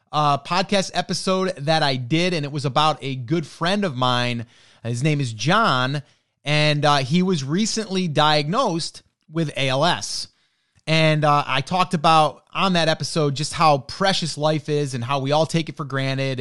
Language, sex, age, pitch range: English, male, 30-49, 140-180 Hz